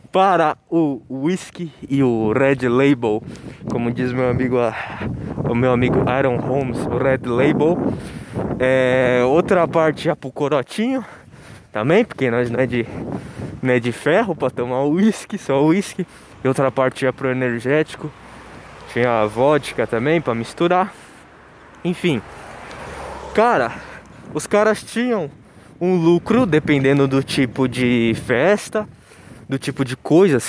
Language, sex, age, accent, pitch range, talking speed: Portuguese, male, 20-39, Brazilian, 125-175 Hz, 140 wpm